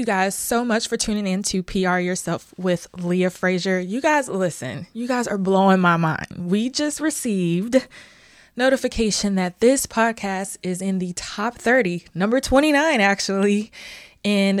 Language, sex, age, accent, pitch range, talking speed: English, female, 20-39, American, 175-215 Hz, 150 wpm